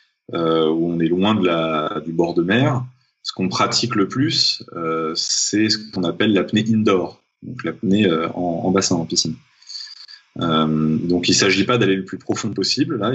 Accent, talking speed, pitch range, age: French, 195 wpm, 85-120 Hz, 20-39